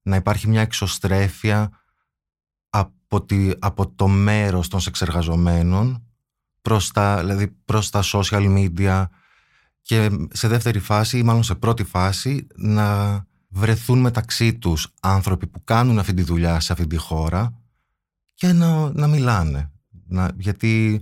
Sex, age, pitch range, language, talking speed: male, 20-39, 85-105 Hz, Greek, 125 wpm